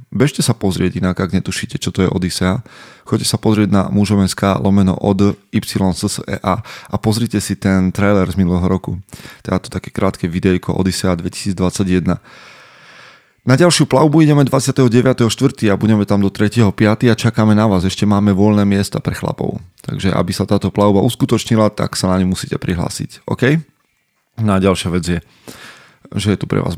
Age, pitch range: 20-39, 95-115 Hz